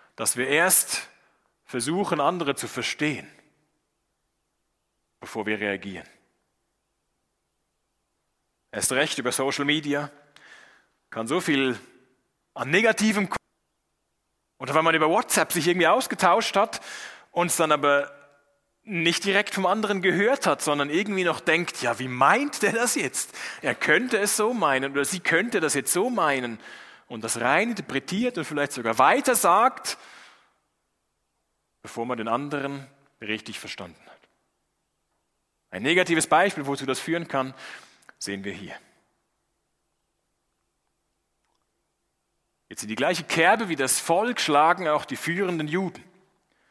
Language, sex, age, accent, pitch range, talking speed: German, male, 30-49, German, 135-185 Hz, 125 wpm